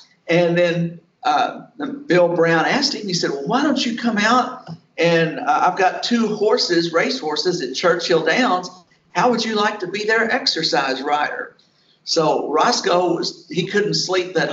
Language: English